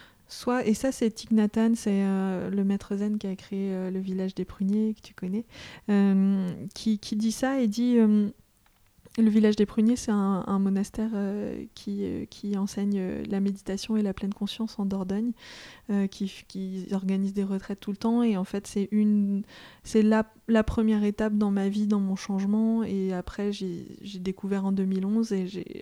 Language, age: French, 20-39